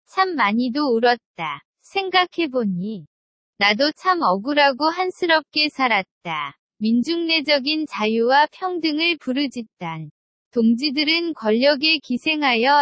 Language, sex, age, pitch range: Korean, female, 20-39, 230-315 Hz